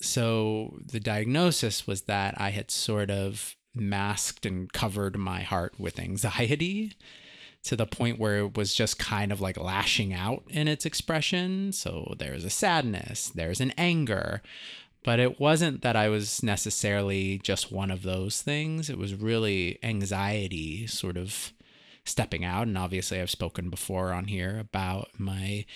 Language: English